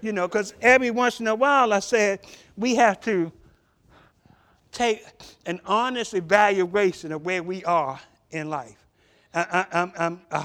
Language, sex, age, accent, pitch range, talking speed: English, male, 60-79, American, 165-200 Hz, 155 wpm